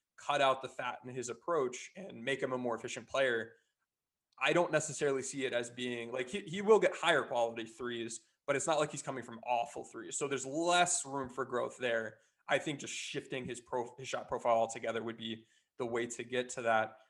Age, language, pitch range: 20-39, English, 120-150 Hz